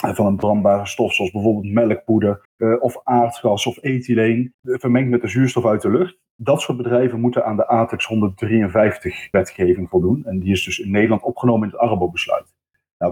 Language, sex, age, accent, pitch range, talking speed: Dutch, male, 40-59, Dutch, 105-130 Hz, 180 wpm